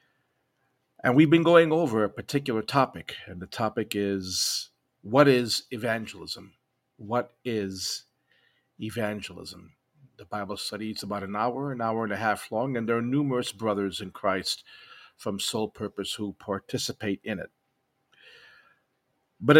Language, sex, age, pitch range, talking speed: English, male, 50-69, 100-120 Hz, 140 wpm